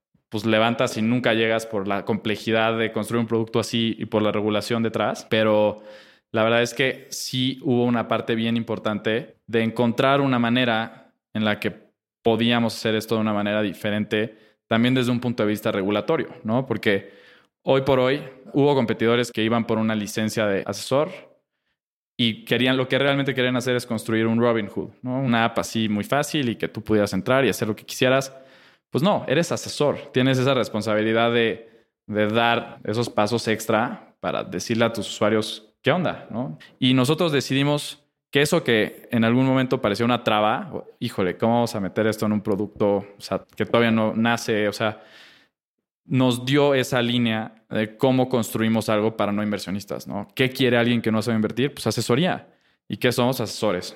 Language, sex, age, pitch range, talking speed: Spanish, male, 20-39, 110-125 Hz, 185 wpm